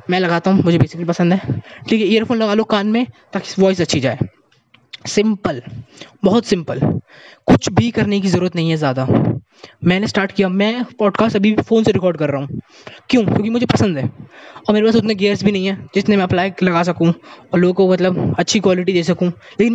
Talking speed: 205 wpm